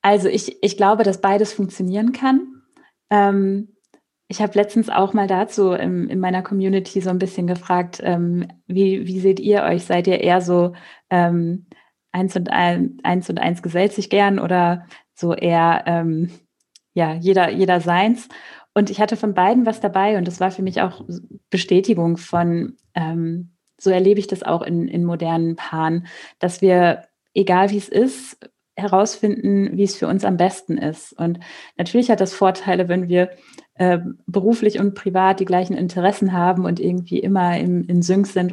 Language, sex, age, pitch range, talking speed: German, female, 20-39, 175-200 Hz, 165 wpm